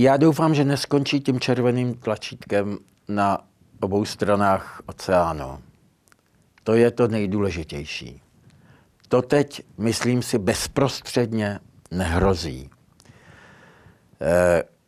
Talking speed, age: 85 wpm, 60-79